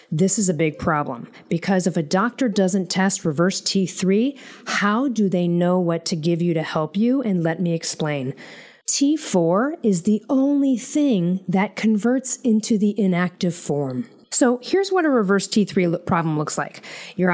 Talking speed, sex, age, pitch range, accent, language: 175 wpm, female, 40-59, 165-235 Hz, American, English